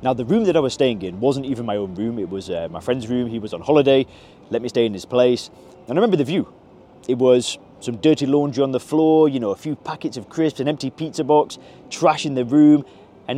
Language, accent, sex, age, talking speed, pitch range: English, British, male, 20-39, 260 wpm, 110-150 Hz